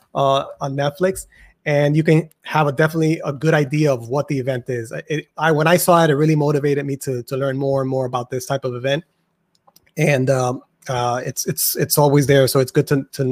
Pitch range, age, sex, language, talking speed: 140-170 Hz, 30-49, male, English, 230 wpm